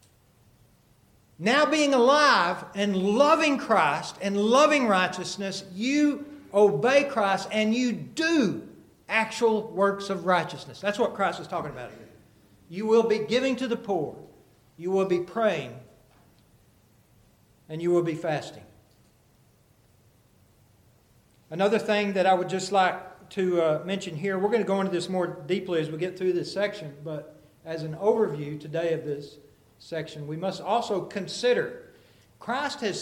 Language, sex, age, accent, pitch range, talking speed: English, male, 60-79, American, 125-205 Hz, 145 wpm